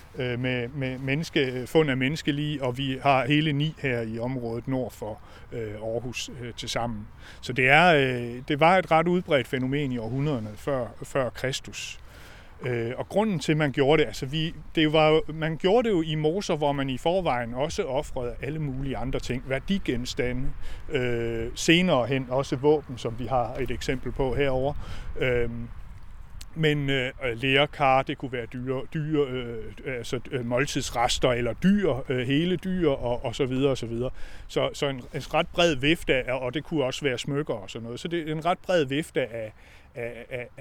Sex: male